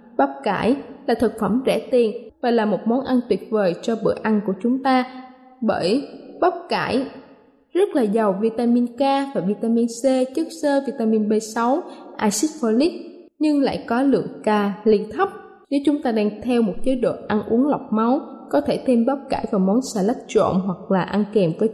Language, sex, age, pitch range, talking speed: Vietnamese, female, 10-29, 220-285 Hz, 195 wpm